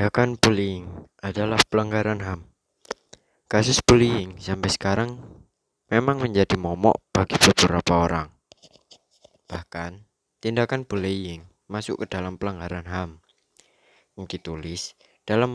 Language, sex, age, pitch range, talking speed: Indonesian, male, 20-39, 90-110 Hz, 100 wpm